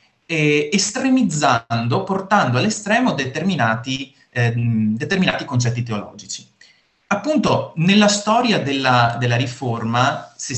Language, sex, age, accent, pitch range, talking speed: Italian, male, 30-49, native, 120-180 Hz, 90 wpm